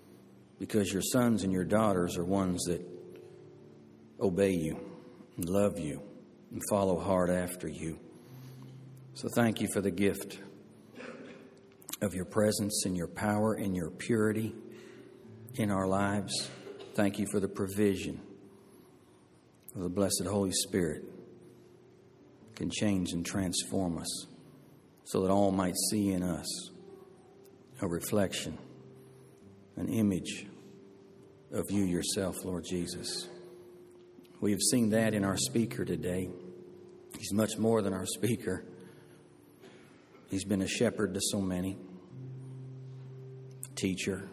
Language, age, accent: English, 60-79, American